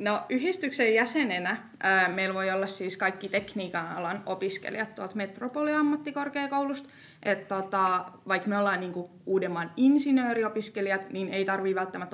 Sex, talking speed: female, 120 wpm